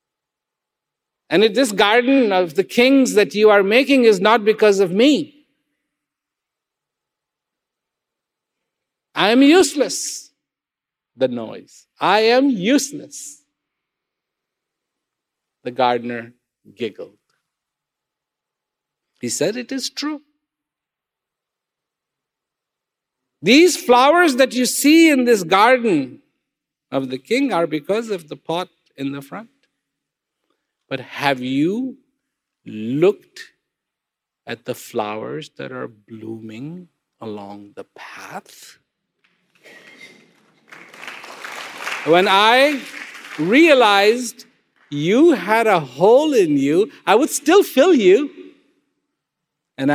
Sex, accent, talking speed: male, Indian, 95 wpm